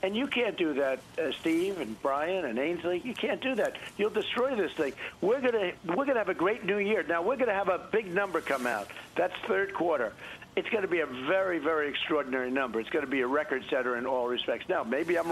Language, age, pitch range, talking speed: English, 60-79, 145-190 Hz, 245 wpm